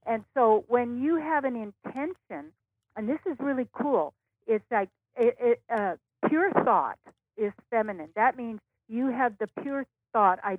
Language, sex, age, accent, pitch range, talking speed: English, female, 60-79, American, 185-245 Hz, 165 wpm